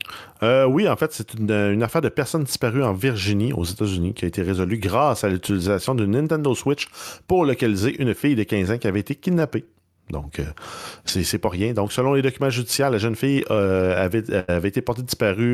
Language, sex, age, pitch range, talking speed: French, male, 40-59, 90-115 Hz, 210 wpm